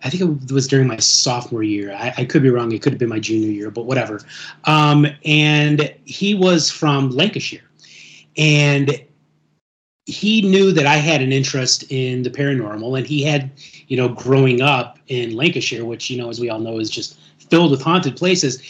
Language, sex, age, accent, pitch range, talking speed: English, male, 30-49, American, 130-165 Hz, 195 wpm